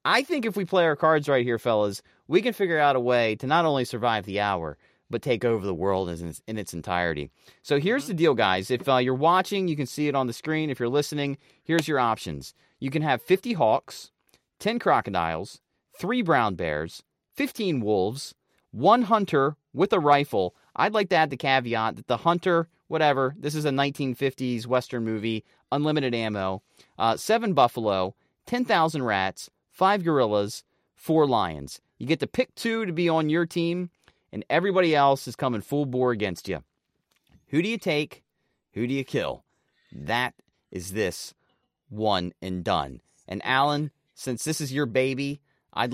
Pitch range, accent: 115-160 Hz, American